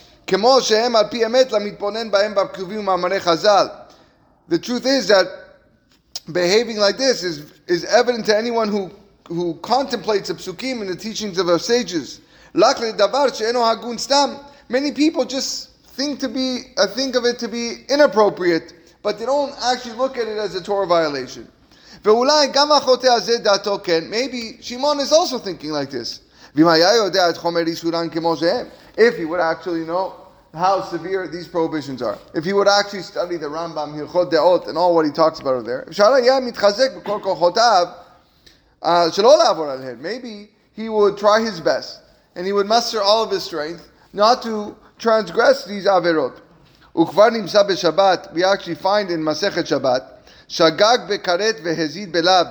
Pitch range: 170-235 Hz